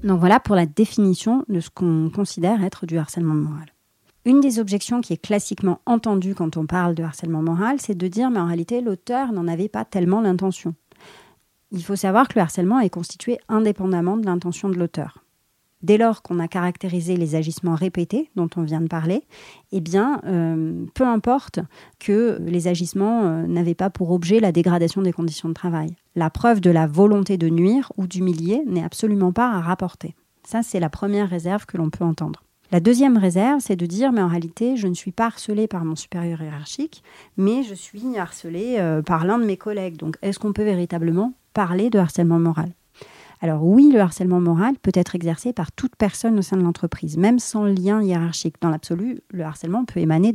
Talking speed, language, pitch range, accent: 200 wpm, French, 170-215 Hz, French